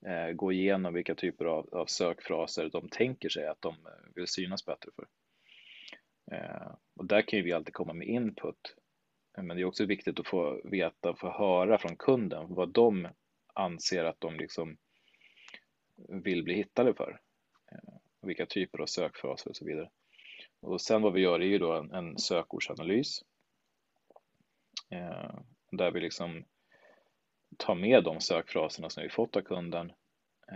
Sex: male